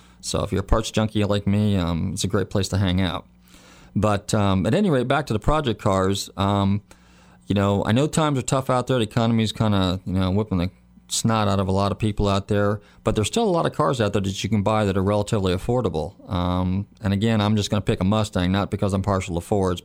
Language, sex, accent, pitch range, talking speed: English, male, American, 90-105 Hz, 265 wpm